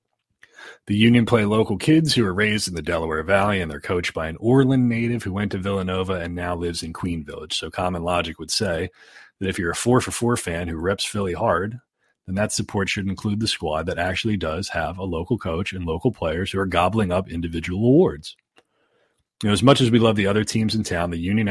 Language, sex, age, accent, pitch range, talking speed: English, male, 30-49, American, 90-110 Hz, 230 wpm